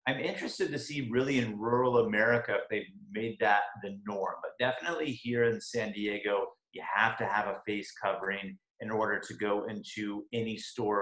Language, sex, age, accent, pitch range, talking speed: English, male, 30-49, American, 100-115 Hz, 185 wpm